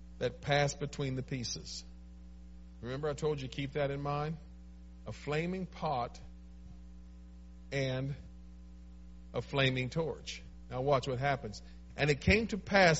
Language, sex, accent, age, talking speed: English, male, American, 50-69, 135 wpm